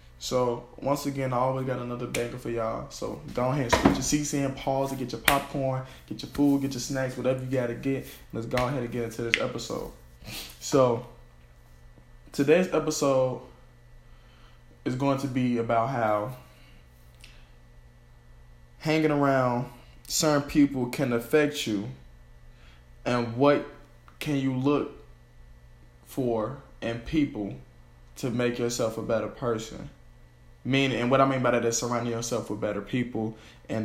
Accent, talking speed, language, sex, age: American, 150 wpm, English, male, 20-39